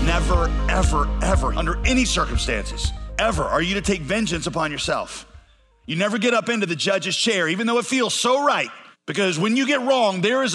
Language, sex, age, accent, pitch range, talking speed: English, male, 40-59, American, 155-190 Hz, 200 wpm